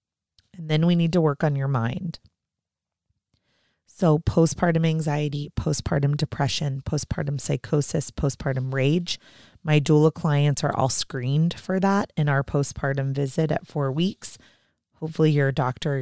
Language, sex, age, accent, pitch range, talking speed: English, female, 30-49, American, 140-170 Hz, 140 wpm